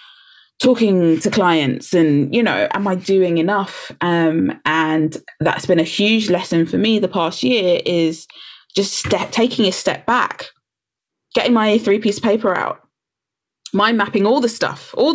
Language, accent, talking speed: English, British, 160 wpm